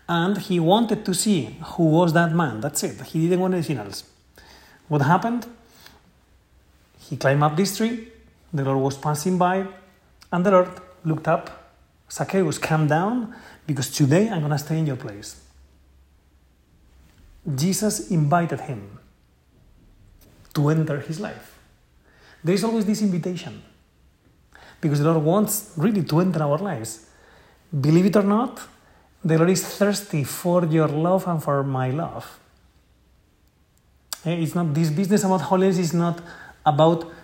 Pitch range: 135-180 Hz